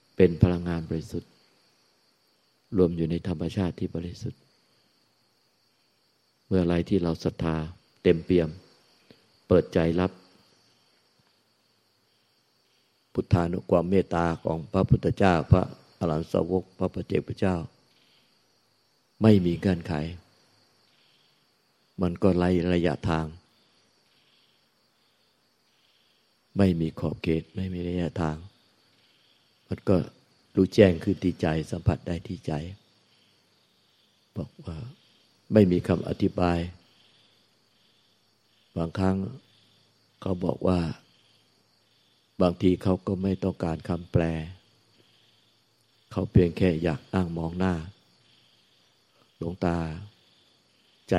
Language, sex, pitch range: Thai, male, 85-100 Hz